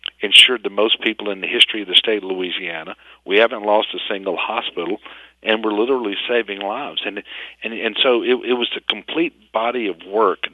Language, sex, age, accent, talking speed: English, male, 50-69, American, 200 wpm